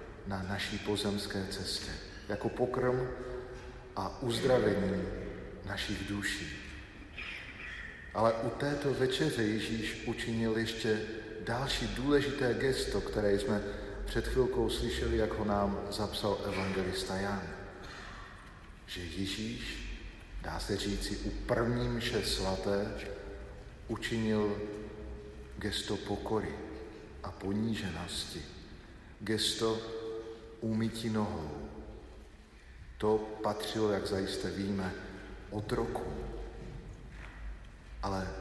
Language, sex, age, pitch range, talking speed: Slovak, male, 40-59, 95-110 Hz, 85 wpm